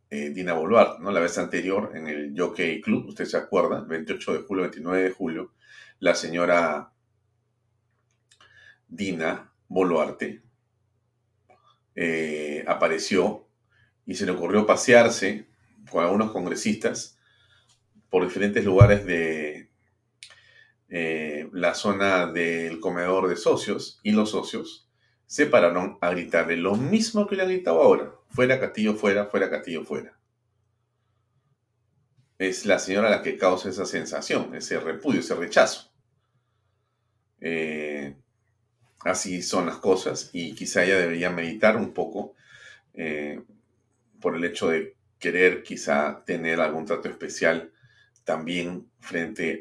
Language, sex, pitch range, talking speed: Spanish, male, 85-115 Hz, 120 wpm